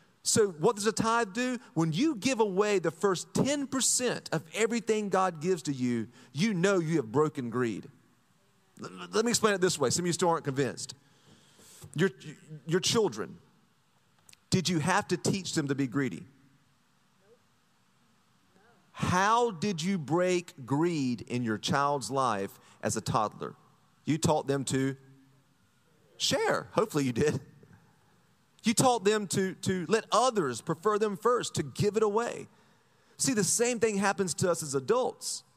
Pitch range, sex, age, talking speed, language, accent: 150-220 Hz, male, 40-59, 155 wpm, English, American